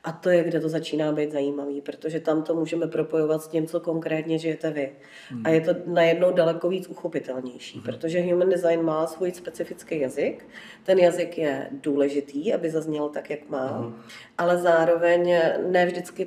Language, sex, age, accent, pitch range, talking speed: Czech, female, 40-59, native, 155-175 Hz, 170 wpm